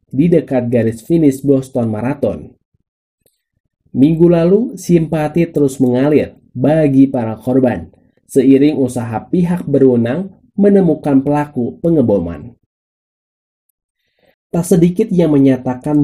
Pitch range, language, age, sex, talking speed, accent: 120-155 Hz, English, 20-39, male, 95 wpm, Indonesian